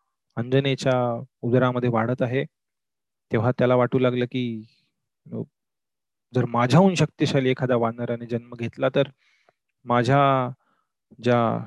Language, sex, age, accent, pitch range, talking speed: Marathi, male, 30-49, native, 120-140 Hz, 75 wpm